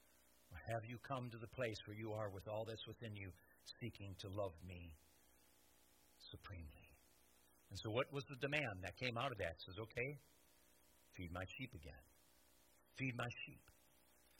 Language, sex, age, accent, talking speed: English, male, 60-79, American, 165 wpm